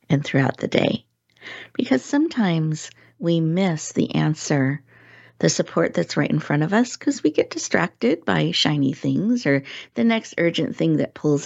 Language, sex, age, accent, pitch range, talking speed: English, female, 50-69, American, 140-170 Hz, 170 wpm